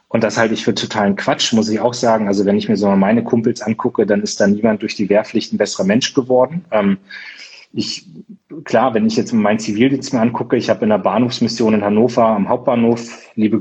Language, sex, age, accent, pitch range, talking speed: German, male, 30-49, German, 105-125 Hz, 220 wpm